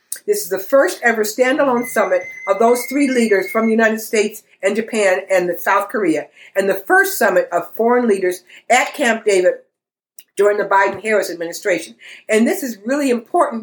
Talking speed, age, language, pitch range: 180 wpm, 50-69, English, 195-265 Hz